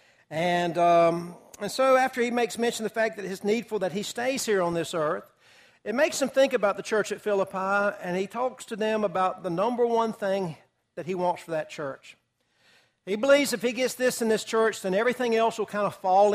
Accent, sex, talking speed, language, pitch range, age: American, male, 230 wpm, English, 185-225 Hz, 60-79